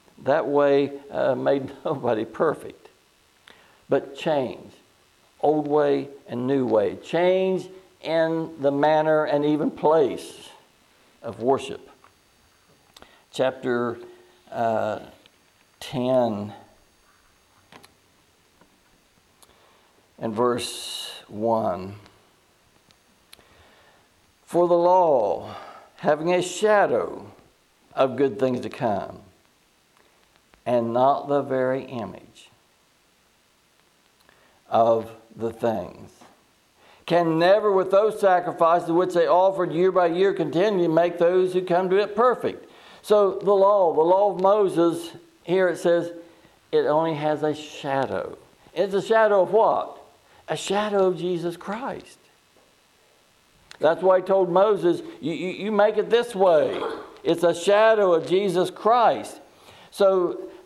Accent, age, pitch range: American, 60-79, 135-190 Hz